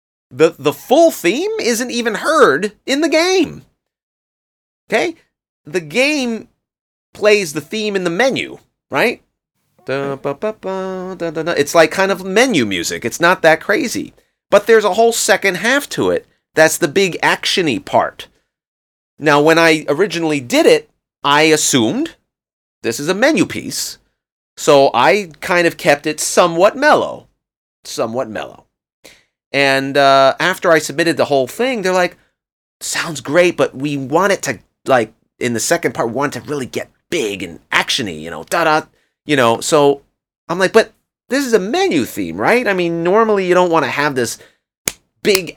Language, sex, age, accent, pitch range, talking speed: English, male, 30-49, American, 145-225 Hz, 160 wpm